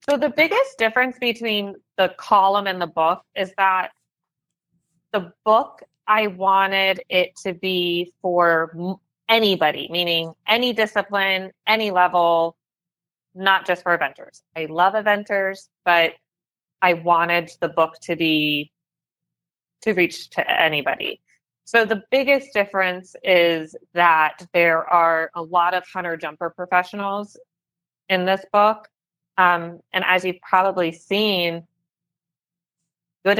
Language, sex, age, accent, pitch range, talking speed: English, female, 30-49, American, 170-200 Hz, 120 wpm